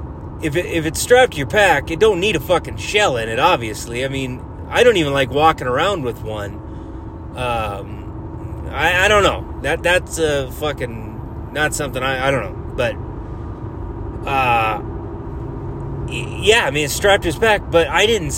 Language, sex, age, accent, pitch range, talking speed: English, male, 30-49, American, 120-175 Hz, 180 wpm